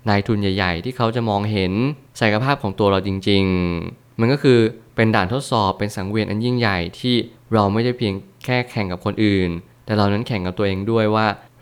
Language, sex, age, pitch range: Thai, male, 20-39, 100-120 Hz